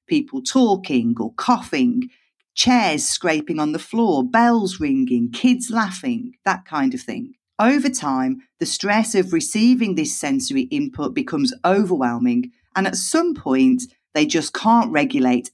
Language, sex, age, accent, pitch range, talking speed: English, female, 40-59, British, 170-260 Hz, 140 wpm